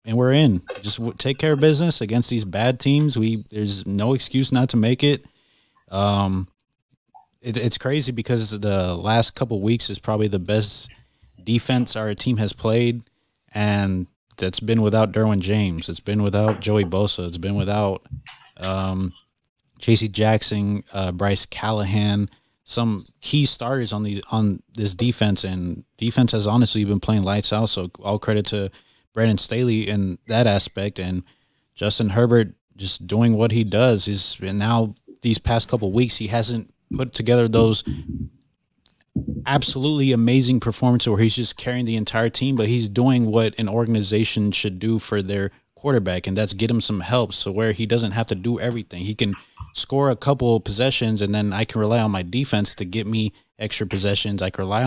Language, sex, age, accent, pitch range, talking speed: English, male, 20-39, American, 100-120 Hz, 175 wpm